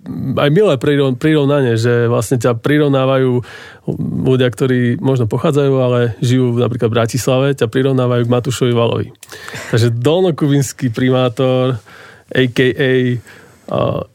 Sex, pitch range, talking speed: male, 120-140 Hz, 110 wpm